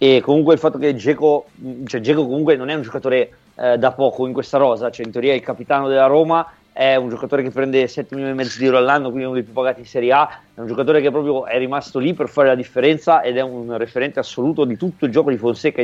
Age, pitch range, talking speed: 30-49, 130-150 Hz, 265 wpm